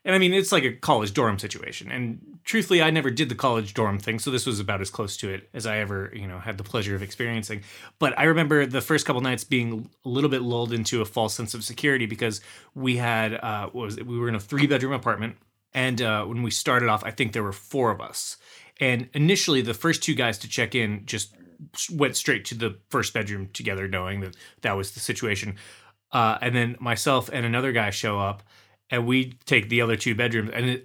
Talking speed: 240 wpm